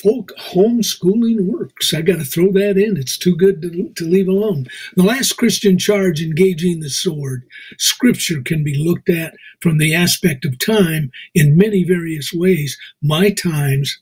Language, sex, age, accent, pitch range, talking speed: English, male, 50-69, American, 150-195 Hz, 165 wpm